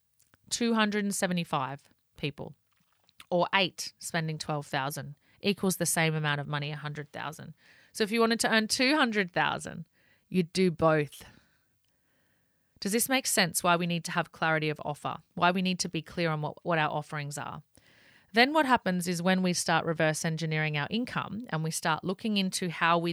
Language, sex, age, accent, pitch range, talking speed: English, female, 30-49, Australian, 160-195 Hz, 170 wpm